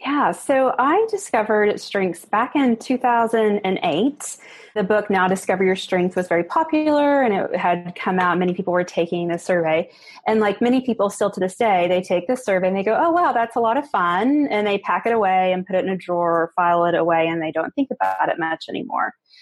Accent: American